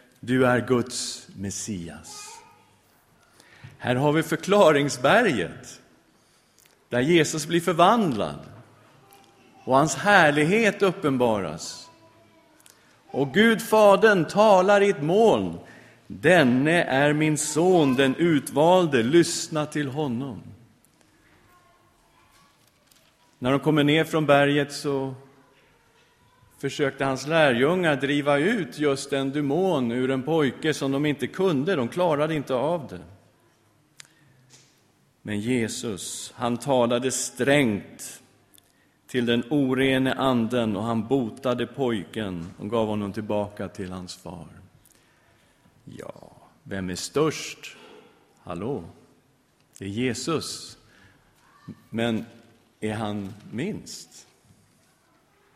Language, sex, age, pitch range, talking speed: English, male, 50-69, 120-155 Hz, 95 wpm